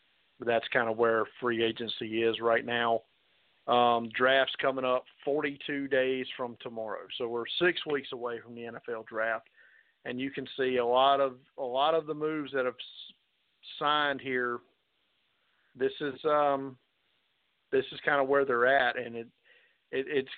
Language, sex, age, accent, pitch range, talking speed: English, male, 50-69, American, 120-140 Hz, 165 wpm